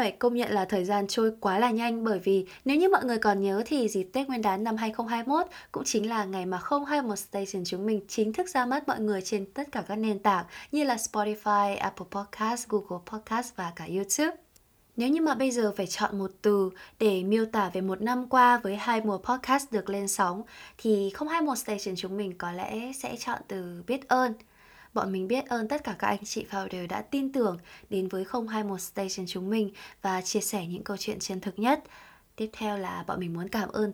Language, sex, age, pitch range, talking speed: English, female, 20-39, 195-245 Hz, 235 wpm